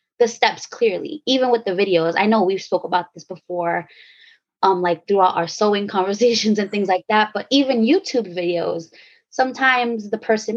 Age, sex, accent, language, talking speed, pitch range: 20-39, female, American, English, 175 wpm, 180-255 Hz